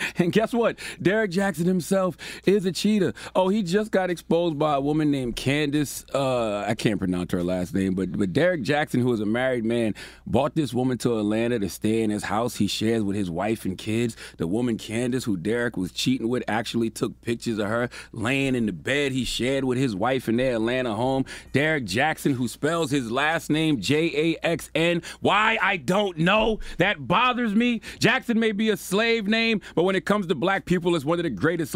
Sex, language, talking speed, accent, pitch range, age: male, English, 215 wpm, American, 115-180 Hz, 30-49